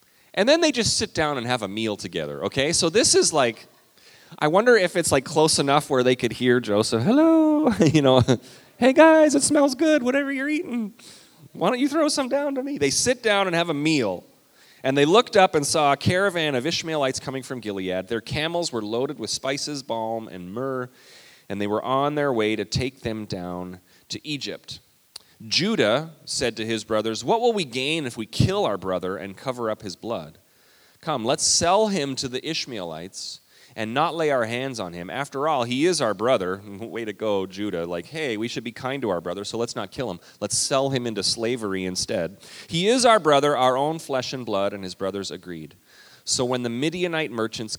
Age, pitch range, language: 30-49, 105-155 Hz, English